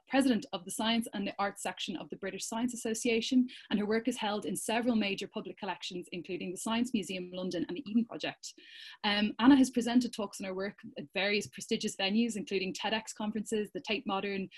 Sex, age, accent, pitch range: female, 20-39, Irish, 195-235 Hz